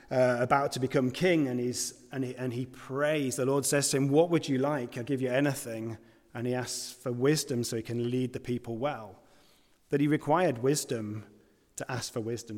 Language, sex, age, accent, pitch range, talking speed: English, male, 30-49, British, 115-140 Hz, 215 wpm